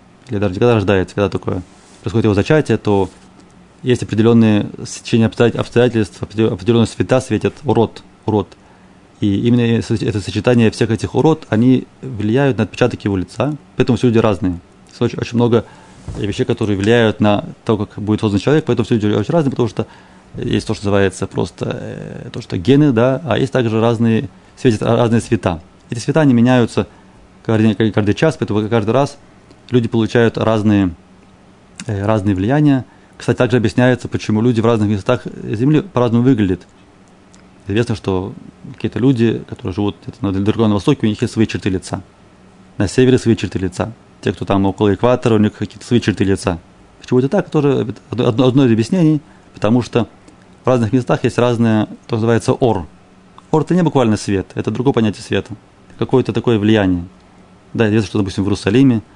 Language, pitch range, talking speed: Russian, 100-125 Hz, 165 wpm